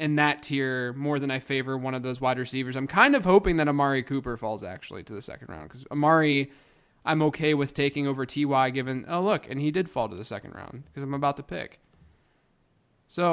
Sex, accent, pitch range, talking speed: male, American, 135-160 Hz, 235 wpm